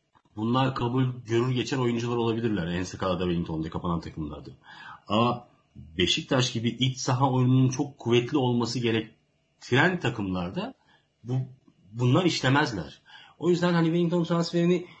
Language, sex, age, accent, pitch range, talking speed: Turkish, male, 40-59, native, 110-165 Hz, 120 wpm